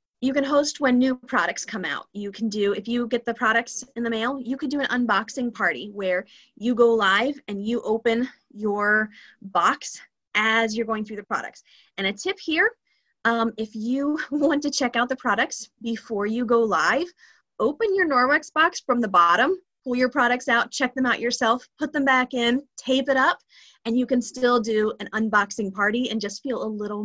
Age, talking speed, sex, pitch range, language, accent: 30-49, 205 wpm, female, 210-265 Hz, English, American